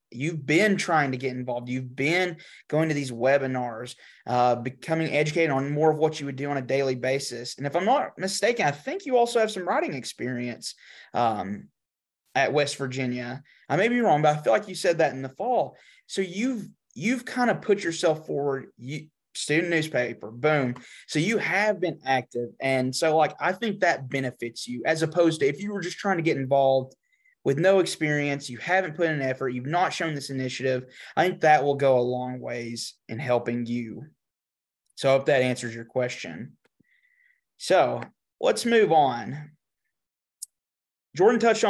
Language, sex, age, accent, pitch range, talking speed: English, male, 20-39, American, 130-175 Hz, 190 wpm